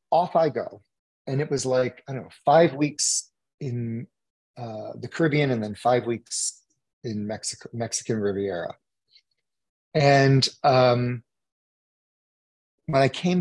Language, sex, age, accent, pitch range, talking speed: English, male, 40-59, American, 125-170 Hz, 130 wpm